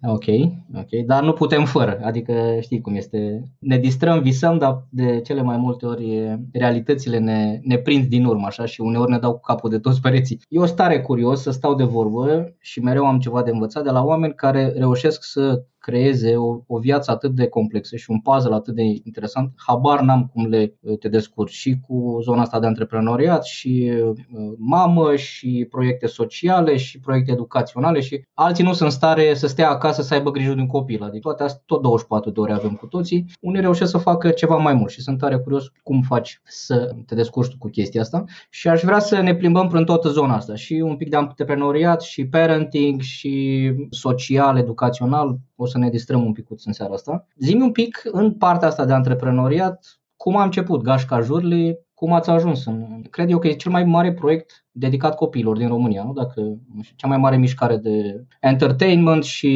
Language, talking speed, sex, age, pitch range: Romanian, 200 wpm, male, 20-39, 120-155 Hz